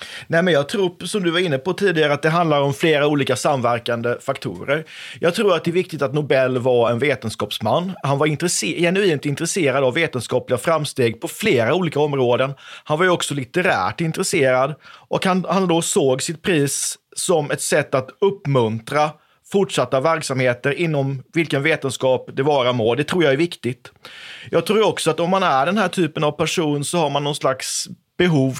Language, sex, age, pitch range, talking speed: Swedish, male, 30-49, 135-170 Hz, 185 wpm